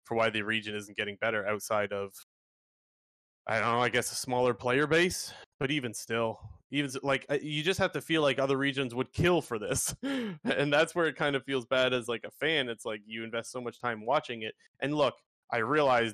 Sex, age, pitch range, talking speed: male, 20-39, 120-150 Hz, 225 wpm